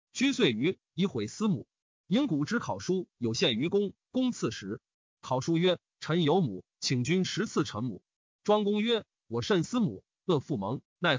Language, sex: Chinese, male